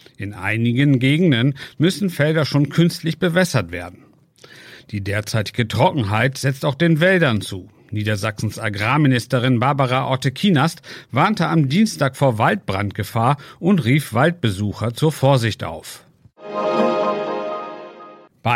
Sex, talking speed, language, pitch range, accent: male, 105 wpm, German, 105-135 Hz, German